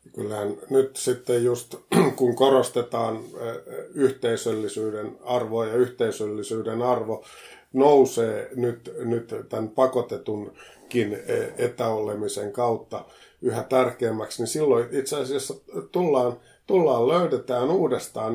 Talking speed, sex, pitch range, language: 90 wpm, male, 115-135 Hz, Finnish